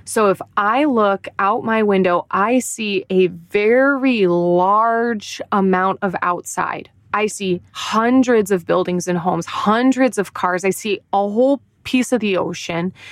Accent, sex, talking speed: American, female, 150 wpm